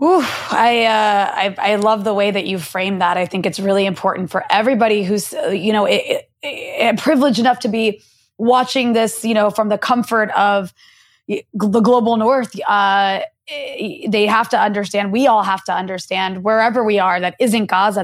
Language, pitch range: English, 195-245 Hz